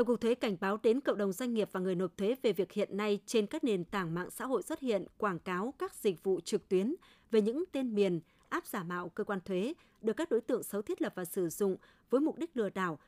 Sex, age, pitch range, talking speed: female, 20-39, 195-240 Hz, 270 wpm